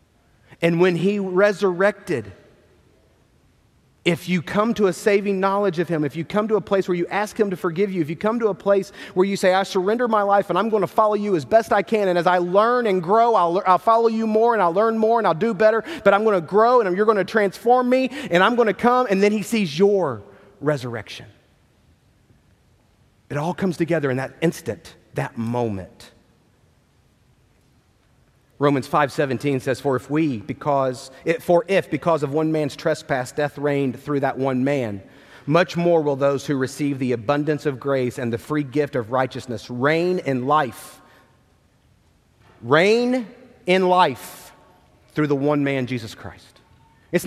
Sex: male